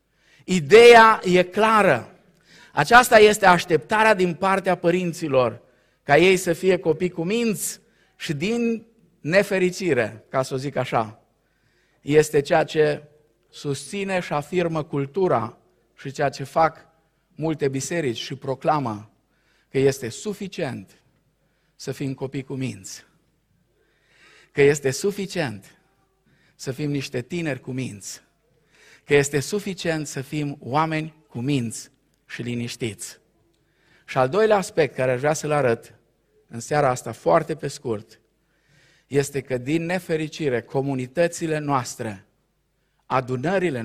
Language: Romanian